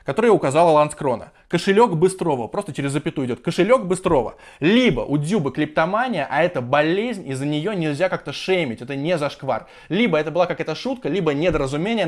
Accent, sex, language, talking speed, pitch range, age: native, male, Russian, 170 wpm, 150-190 Hz, 20-39